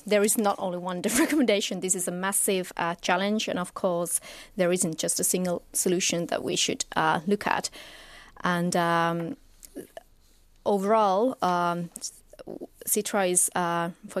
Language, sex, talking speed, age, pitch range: Finnish, female, 150 wpm, 30-49, 175-205 Hz